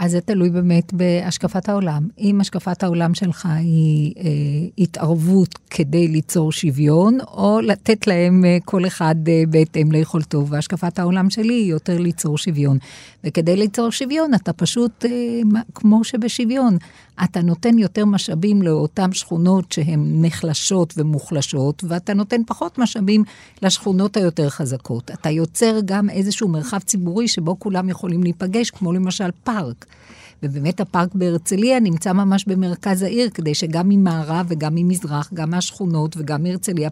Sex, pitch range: female, 160-205 Hz